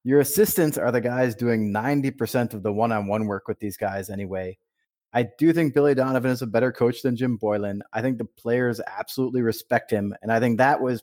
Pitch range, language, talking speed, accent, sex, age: 110-145 Hz, English, 210 wpm, American, male, 30-49